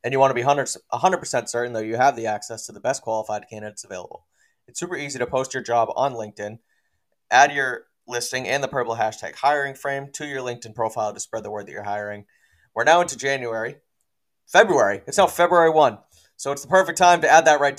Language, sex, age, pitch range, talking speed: English, male, 20-39, 110-145 Hz, 220 wpm